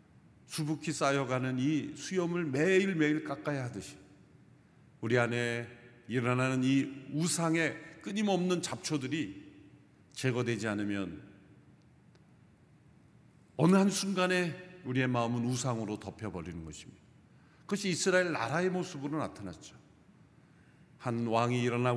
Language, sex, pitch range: Korean, male, 115-155 Hz